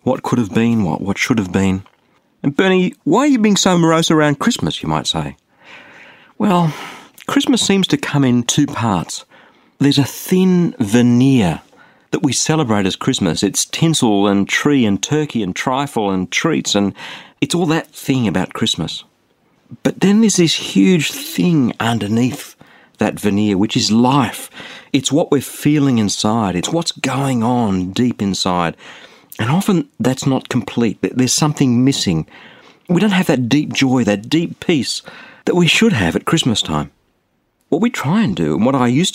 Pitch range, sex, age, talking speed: 105-160 Hz, male, 50-69, 170 wpm